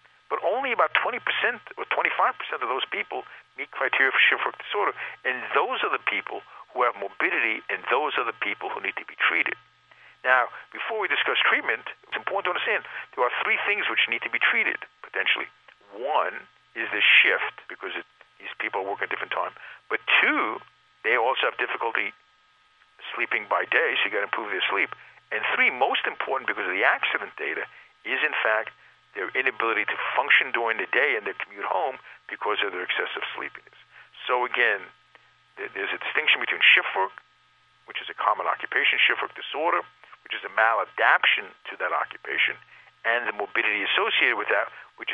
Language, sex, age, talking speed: English, male, 50-69, 185 wpm